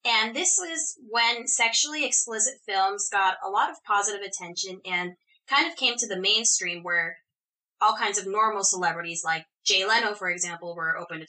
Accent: American